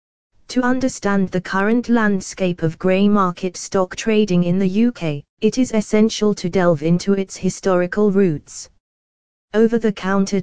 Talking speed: 130 wpm